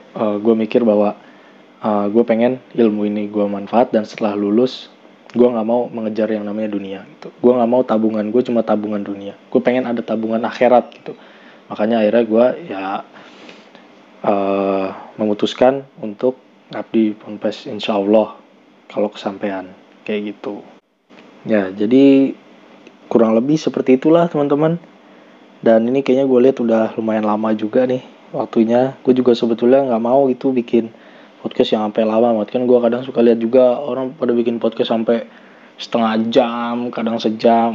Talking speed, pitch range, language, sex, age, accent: 150 wpm, 105-125 Hz, Indonesian, male, 20-39, native